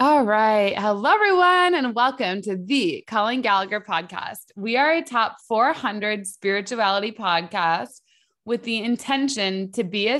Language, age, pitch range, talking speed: English, 20-39, 190-240 Hz, 140 wpm